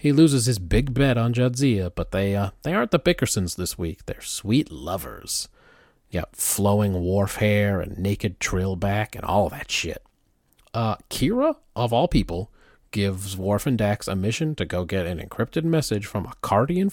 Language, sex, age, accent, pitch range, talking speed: English, male, 40-59, American, 95-130 Hz, 180 wpm